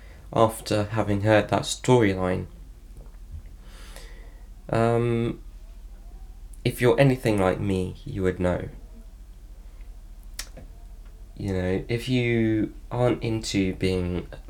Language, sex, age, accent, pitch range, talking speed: English, male, 20-39, British, 85-105 Hz, 85 wpm